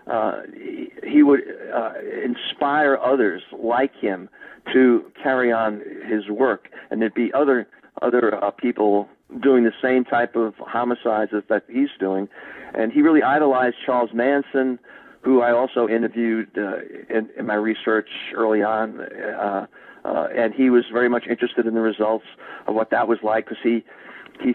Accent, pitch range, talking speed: American, 110-135 Hz, 160 wpm